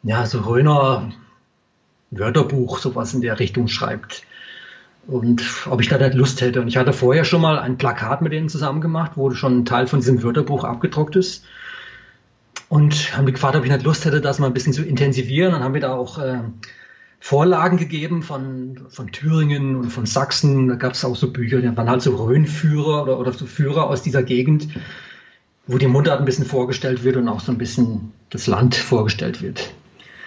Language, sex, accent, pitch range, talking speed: German, male, German, 130-160 Hz, 200 wpm